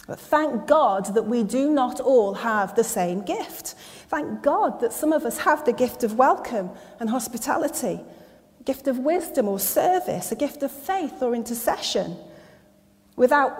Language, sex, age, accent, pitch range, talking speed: English, female, 40-59, British, 190-255 Hz, 170 wpm